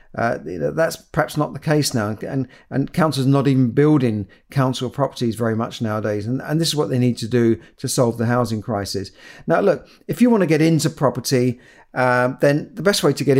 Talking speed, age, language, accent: 215 wpm, 50-69, English, British